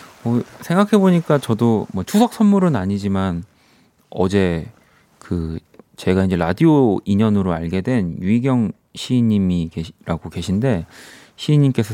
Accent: native